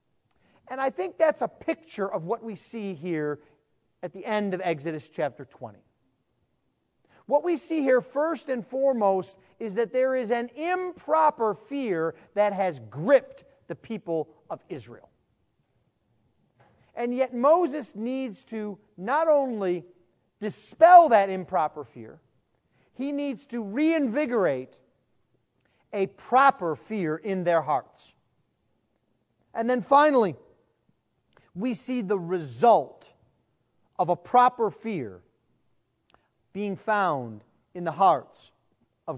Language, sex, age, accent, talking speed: English, male, 40-59, American, 120 wpm